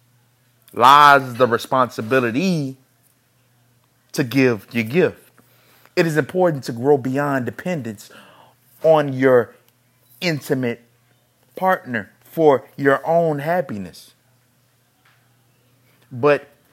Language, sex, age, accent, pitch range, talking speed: English, male, 30-49, American, 120-145 Hz, 85 wpm